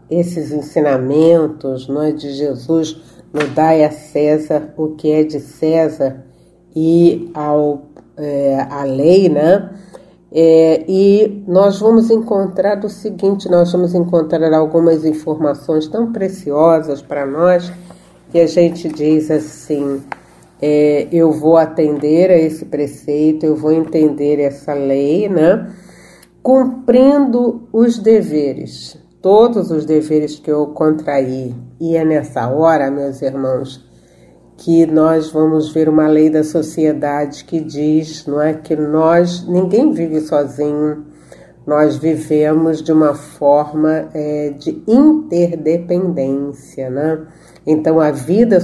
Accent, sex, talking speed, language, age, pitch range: Brazilian, female, 120 wpm, Portuguese, 50-69, 145-170 Hz